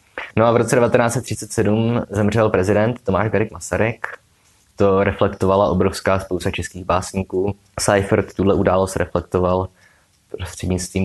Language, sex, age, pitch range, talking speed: Czech, male, 20-39, 90-100 Hz, 115 wpm